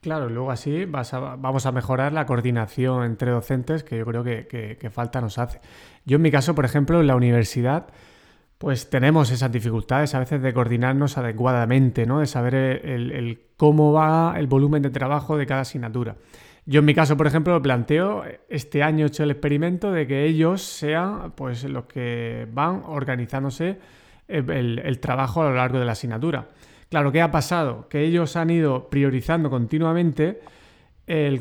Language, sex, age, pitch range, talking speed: Spanish, male, 30-49, 130-155 Hz, 180 wpm